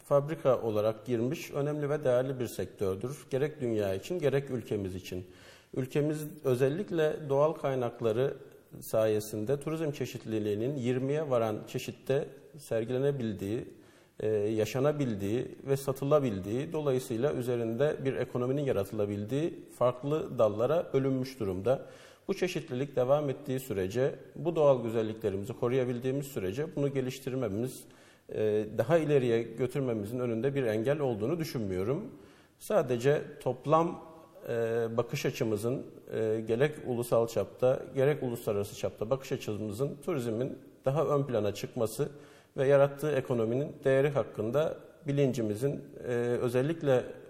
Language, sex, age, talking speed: Turkish, male, 50-69, 105 wpm